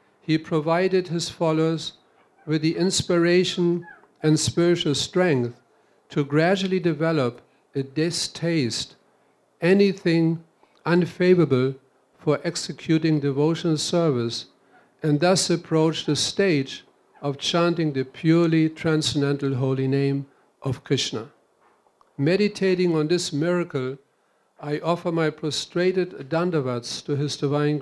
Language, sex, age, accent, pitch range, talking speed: Czech, male, 50-69, German, 140-175 Hz, 100 wpm